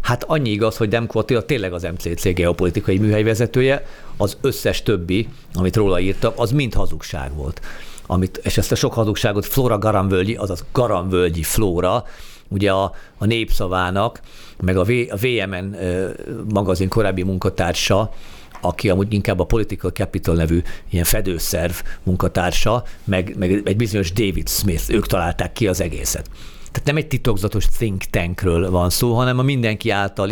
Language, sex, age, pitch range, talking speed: Hungarian, male, 50-69, 90-115 Hz, 150 wpm